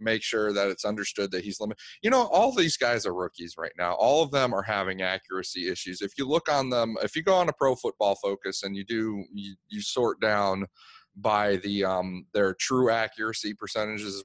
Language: English